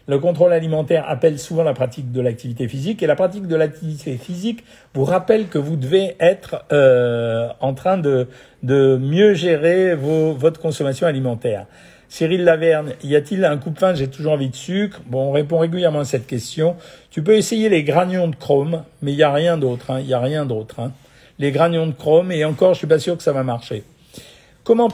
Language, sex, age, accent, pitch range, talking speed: French, male, 50-69, French, 130-170 Hz, 210 wpm